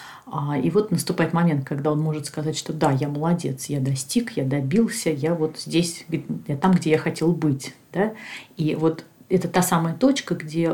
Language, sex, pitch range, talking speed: Russian, female, 145-175 Hz, 185 wpm